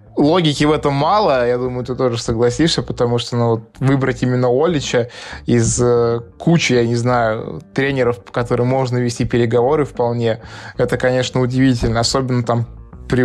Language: Russian